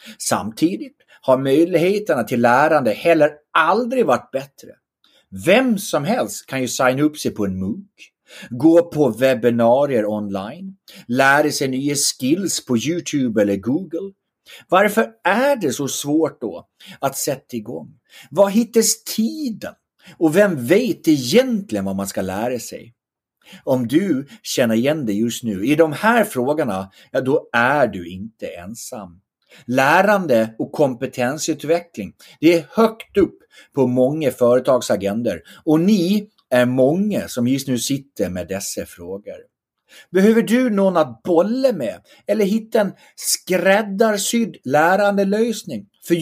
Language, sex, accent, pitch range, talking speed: English, male, Swedish, 125-205 Hz, 135 wpm